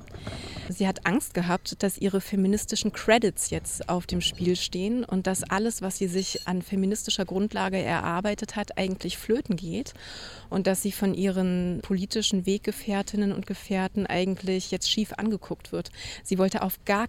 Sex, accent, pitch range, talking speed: female, German, 185-215 Hz, 160 wpm